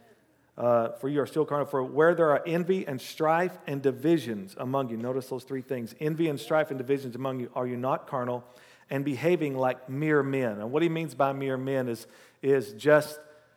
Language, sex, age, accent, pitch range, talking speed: English, male, 50-69, American, 125-150 Hz, 210 wpm